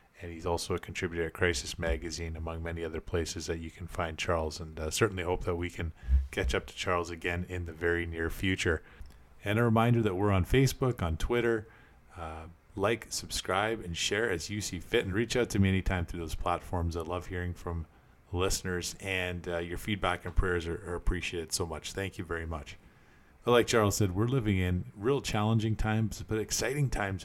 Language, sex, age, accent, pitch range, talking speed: English, male, 30-49, American, 85-105 Hz, 205 wpm